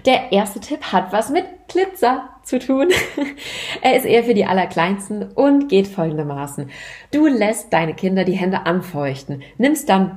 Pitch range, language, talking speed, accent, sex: 175-245 Hz, German, 160 wpm, German, female